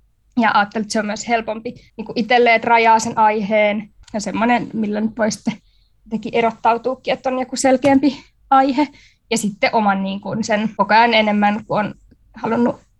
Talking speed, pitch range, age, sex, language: 165 wpm, 215-260 Hz, 20-39, female, Finnish